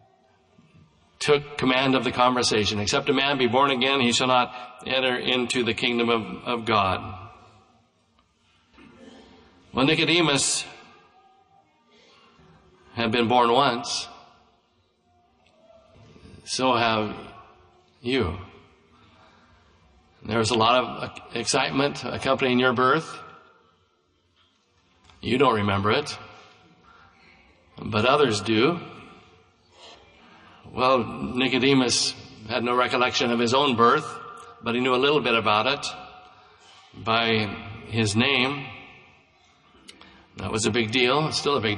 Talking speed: 105 wpm